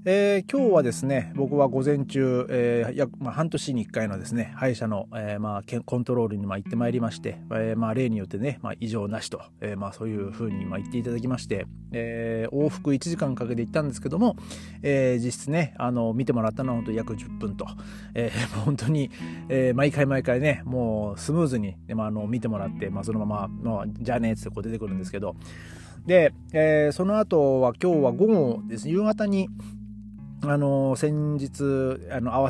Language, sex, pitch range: Japanese, male, 110-140 Hz